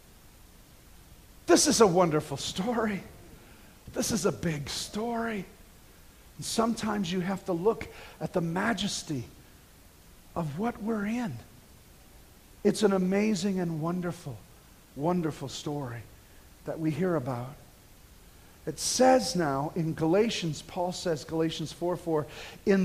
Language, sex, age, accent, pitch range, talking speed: English, male, 50-69, American, 145-185 Hz, 120 wpm